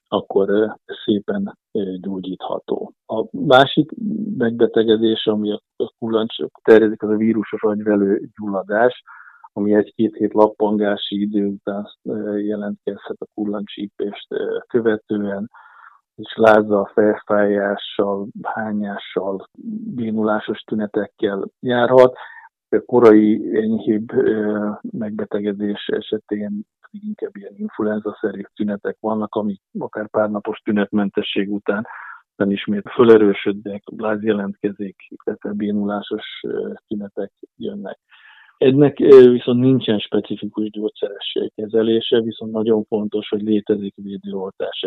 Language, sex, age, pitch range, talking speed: Hungarian, male, 50-69, 105-110 Hz, 90 wpm